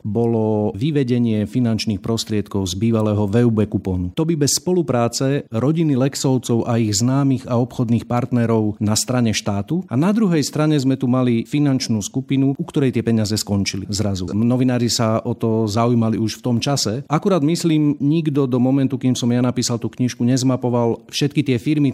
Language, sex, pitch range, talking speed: Slovak, male, 110-140 Hz, 170 wpm